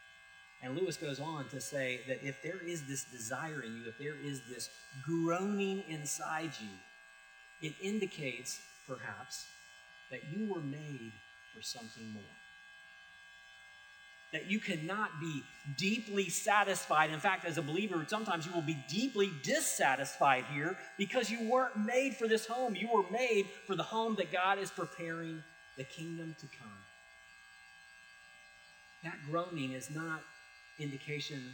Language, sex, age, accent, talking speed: English, male, 40-59, American, 145 wpm